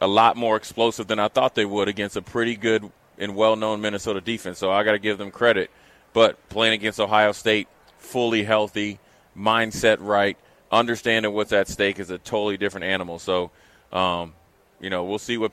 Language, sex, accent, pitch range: English, male, American, 100-115 Hz